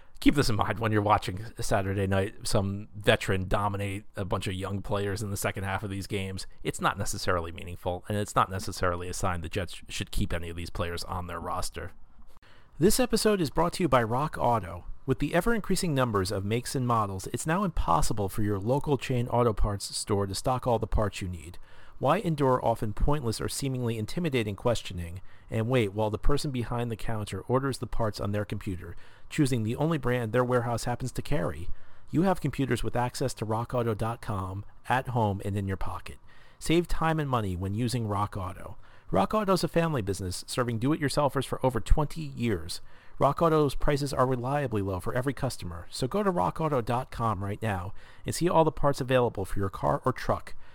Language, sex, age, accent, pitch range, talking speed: English, male, 40-59, American, 100-130 Hz, 200 wpm